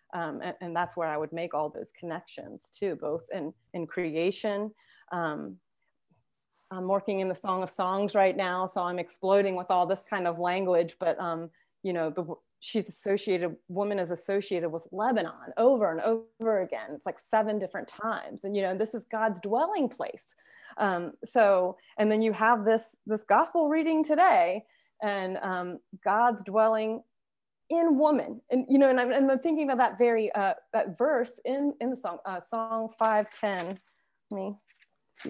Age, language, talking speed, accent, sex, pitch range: 30-49, English, 175 wpm, American, female, 185-230 Hz